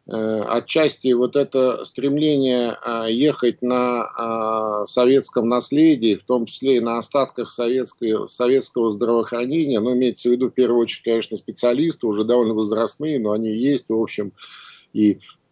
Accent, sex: native, male